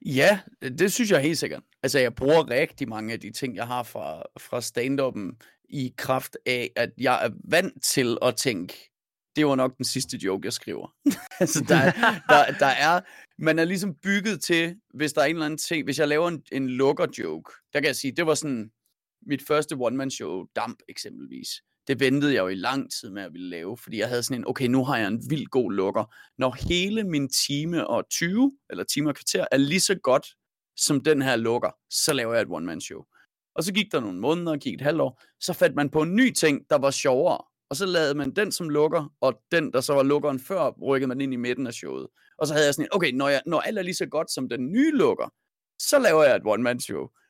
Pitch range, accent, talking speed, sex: 135-175 Hz, native, 235 wpm, male